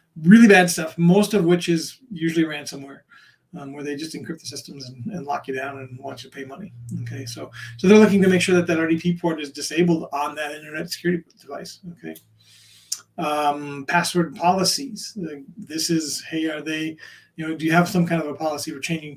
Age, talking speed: 40-59, 210 wpm